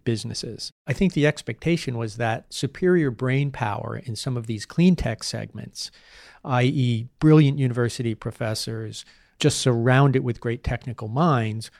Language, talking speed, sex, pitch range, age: English, 135 wpm, male, 115-145 Hz, 40-59